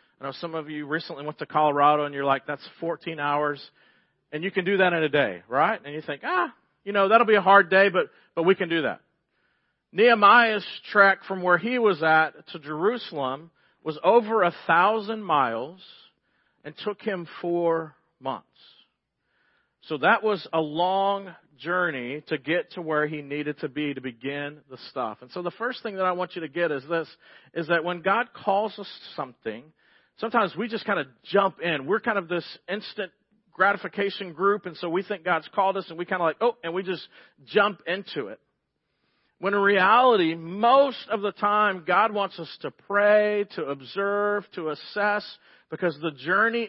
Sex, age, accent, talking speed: male, 40-59, American, 195 wpm